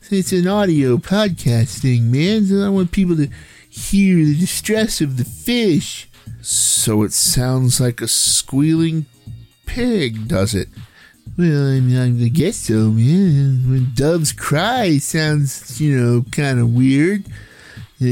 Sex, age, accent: male, 50-69, American